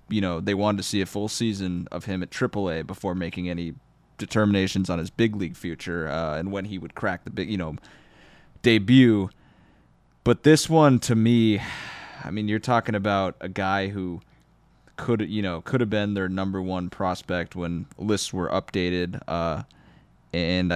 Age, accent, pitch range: 20-39, American, 90-105 Hz